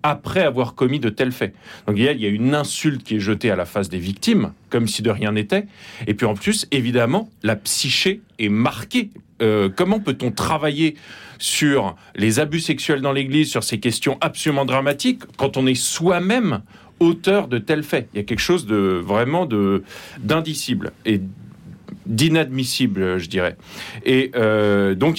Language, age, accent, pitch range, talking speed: French, 40-59, French, 110-160 Hz, 175 wpm